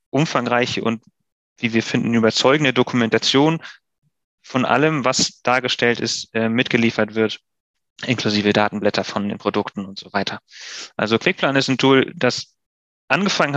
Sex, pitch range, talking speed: male, 115-130 Hz, 130 wpm